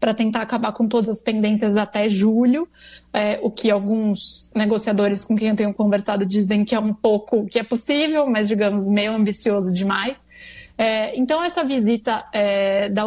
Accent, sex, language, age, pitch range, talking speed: Brazilian, female, Portuguese, 20-39, 220-260 Hz, 175 wpm